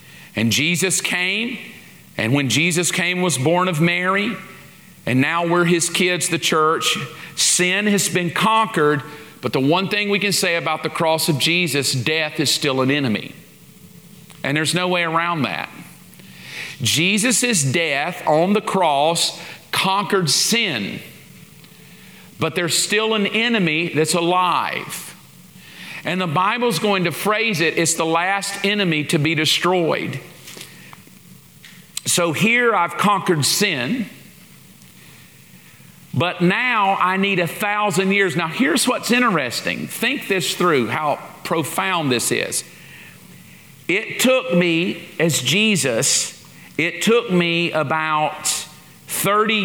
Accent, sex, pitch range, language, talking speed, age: American, male, 160-200 Hz, English, 130 wpm, 50-69